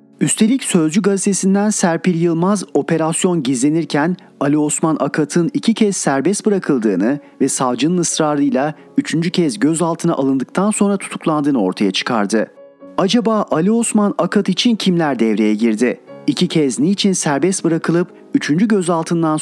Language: Turkish